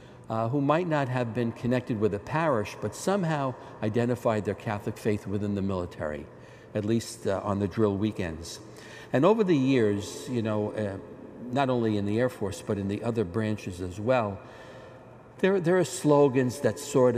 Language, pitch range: English, 105-125 Hz